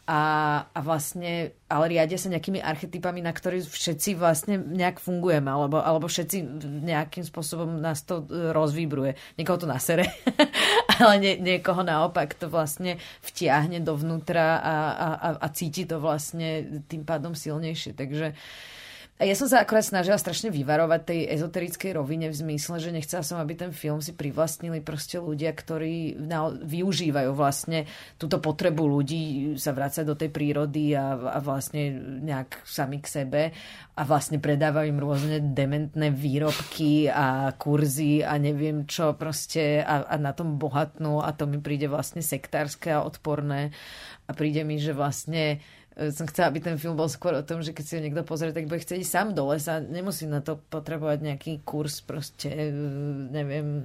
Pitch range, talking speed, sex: 150-170 Hz, 165 wpm, female